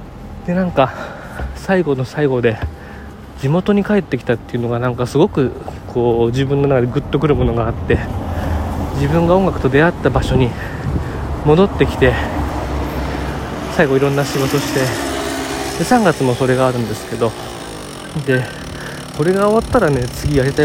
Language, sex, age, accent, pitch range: Japanese, male, 20-39, native, 120-160 Hz